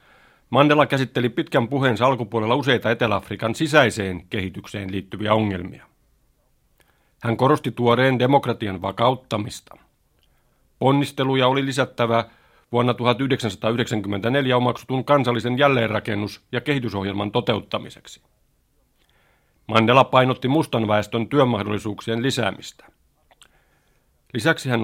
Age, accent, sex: 50-69, native, male